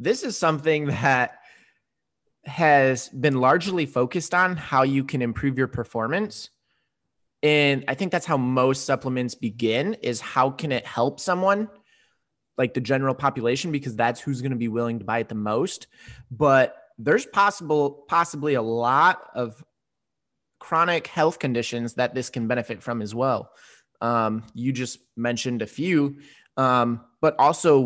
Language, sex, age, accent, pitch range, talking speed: English, male, 20-39, American, 120-145 Hz, 155 wpm